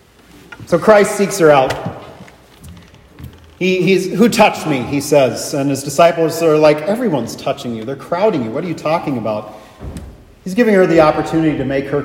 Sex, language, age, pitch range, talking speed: male, English, 40-59, 115-160 Hz, 175 wpm